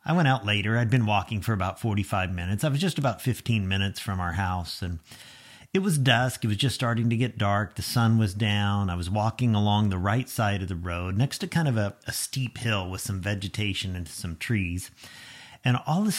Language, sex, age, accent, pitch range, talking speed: English, male, 50-69, American, 105-145 Hz, 235 wpm